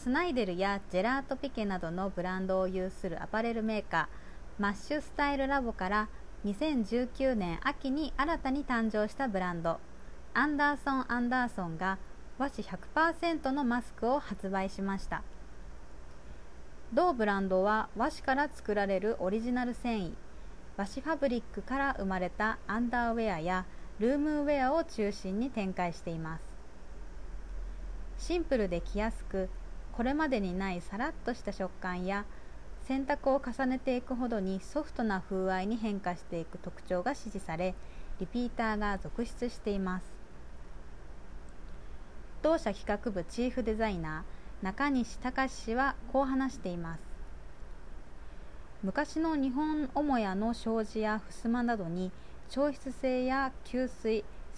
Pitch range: 180-260 Hz